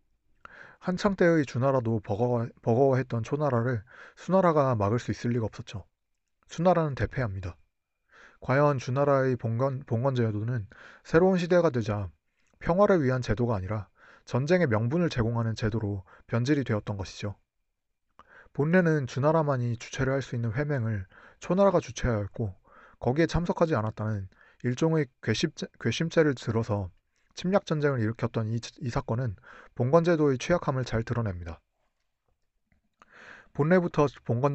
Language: Korean